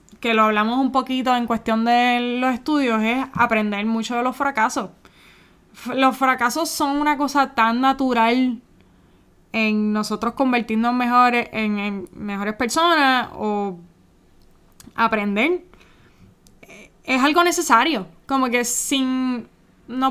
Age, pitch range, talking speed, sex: 10-29, 220-285 Hz, 120 wpm, female